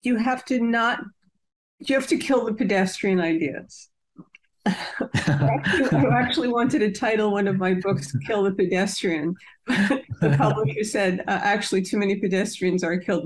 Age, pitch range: 50-69, 185-225 Hz